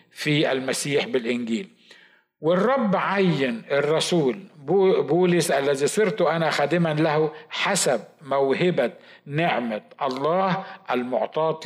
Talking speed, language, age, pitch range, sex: 85 wpm, Arabic, 50-69, 140-190 Hz, male